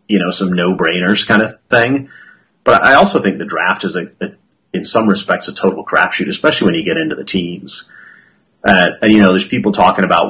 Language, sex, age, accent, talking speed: English, male, 30-49, American, 215 wpm